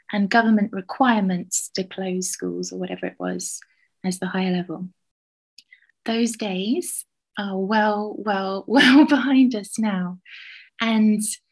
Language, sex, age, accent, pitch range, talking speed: English, female, 20-39, British, 190-230 Hz, 125 wpm